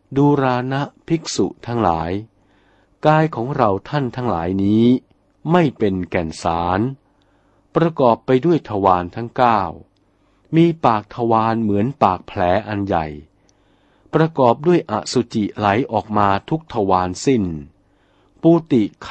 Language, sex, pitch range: Thai, male, 95-140 Hz